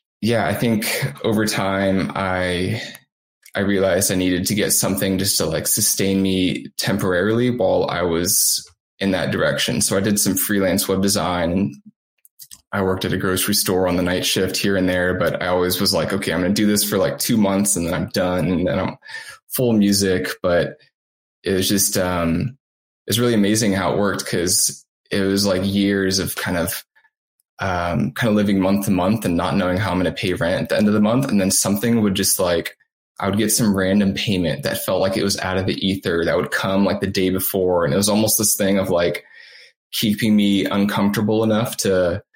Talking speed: 215 wpm